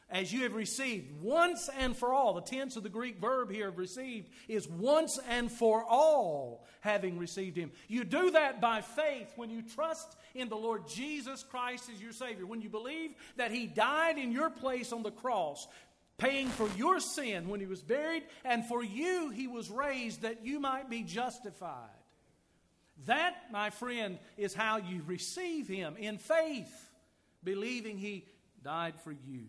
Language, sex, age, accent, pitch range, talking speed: English, male, 50-69, American, 200-260 Hz, 175 wpm